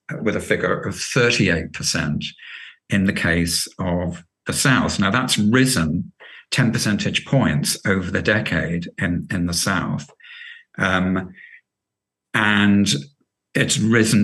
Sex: male